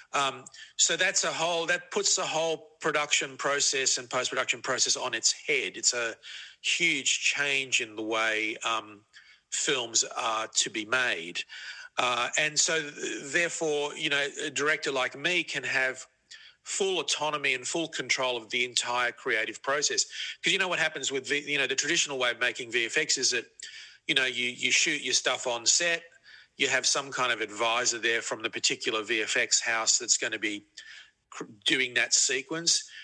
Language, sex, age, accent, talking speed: English, male, 40-59, Australian, 175 wpm